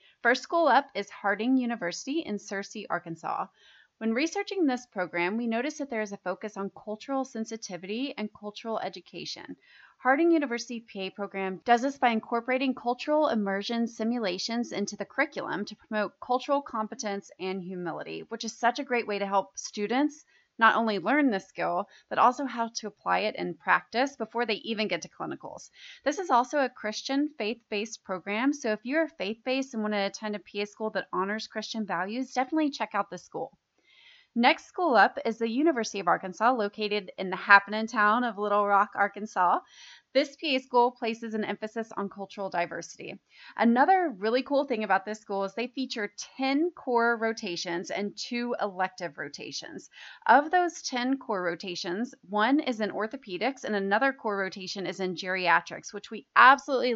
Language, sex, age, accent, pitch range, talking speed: English, female, 30-49, American, 200-260 Hz, 170 wpm